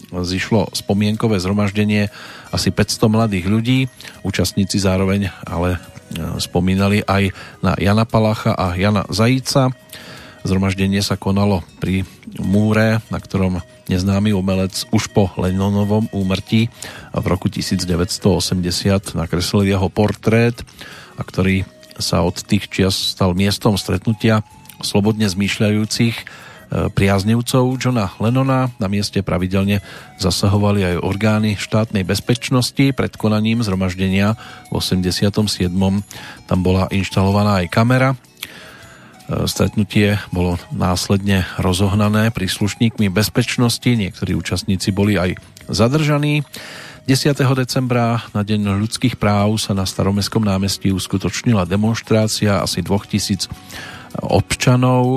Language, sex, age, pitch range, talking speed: Slovak, male, 40-59, 95-110 Hz, 105 wpm